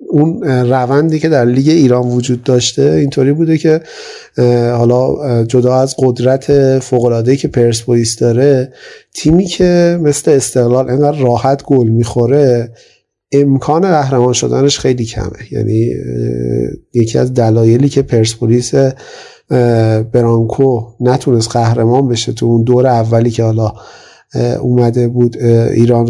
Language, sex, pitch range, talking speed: Persian, male, 120-140 Hz, 115 wpm